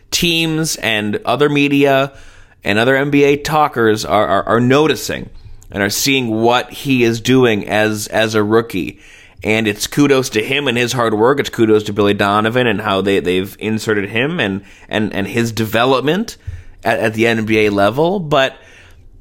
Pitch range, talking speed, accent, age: 105-145 Hz, 170 wpm, American, 30-49